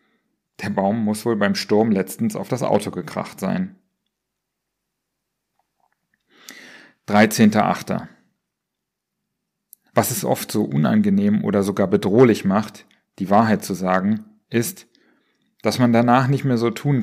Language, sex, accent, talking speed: German, male, German, 120 wpm